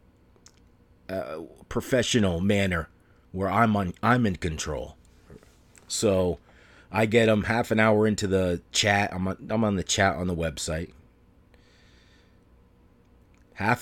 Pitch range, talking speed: 85-105 Hz, 125 wpm